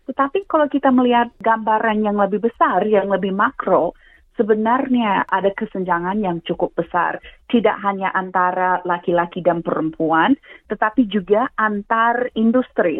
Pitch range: 170-230 Hz